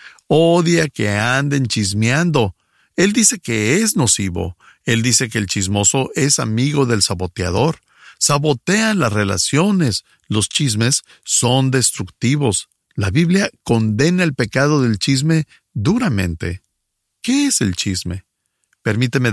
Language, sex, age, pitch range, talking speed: English, male, 50-69, 105-150 Hz, 120 wpm